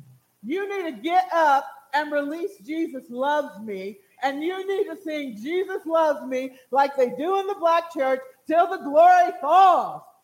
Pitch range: 240-335 Hz